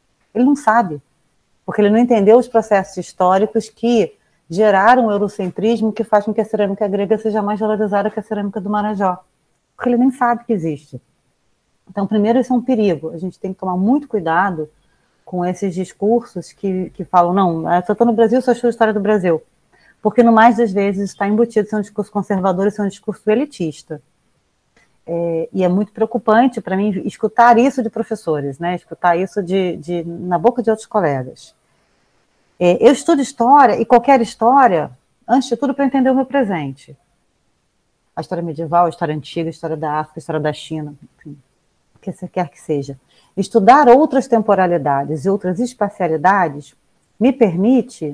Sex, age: female, 30-49